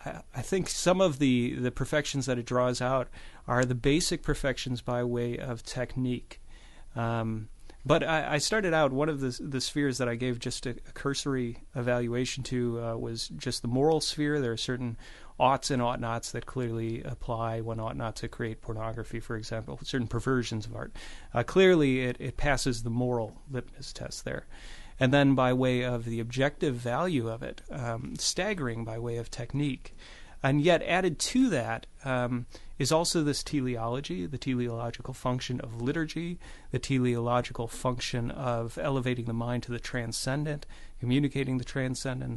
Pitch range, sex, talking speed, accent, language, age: 120-140 Hz, male, 170 wpm, American, English, 30-49